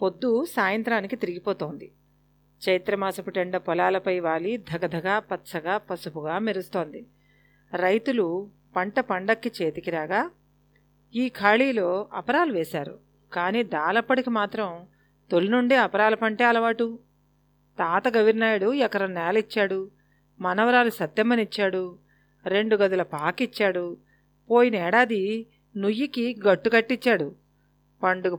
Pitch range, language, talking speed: 185-240 Hz, Telugu, 85 wpm